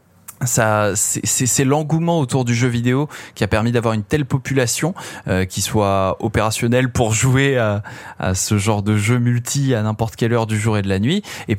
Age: 20-39